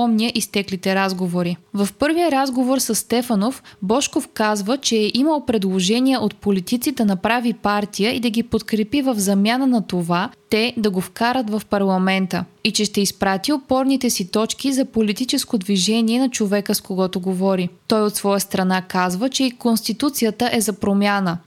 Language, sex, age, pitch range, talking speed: Bulgarian, female, 20-39, 195-245 Hz, 155 wpm